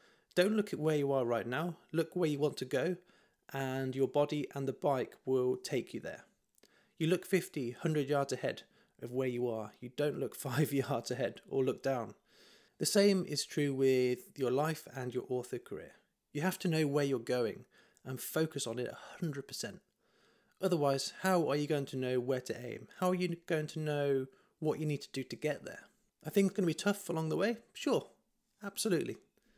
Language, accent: English, British